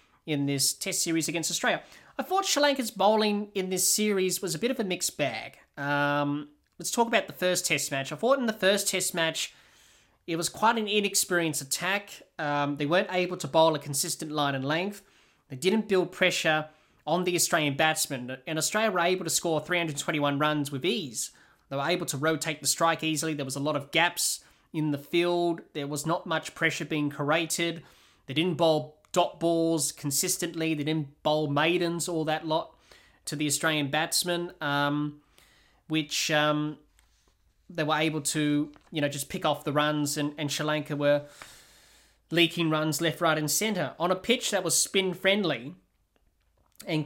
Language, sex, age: English, male, 20-39